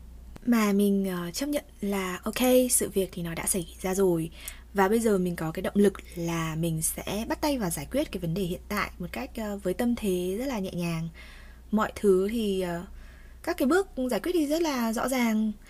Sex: female